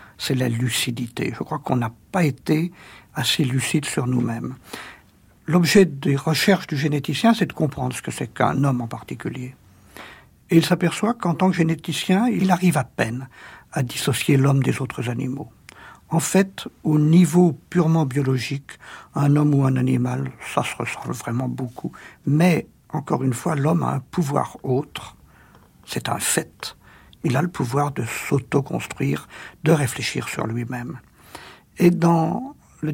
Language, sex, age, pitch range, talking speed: French, male, 60-79, 130-170 Hz, 155 wpm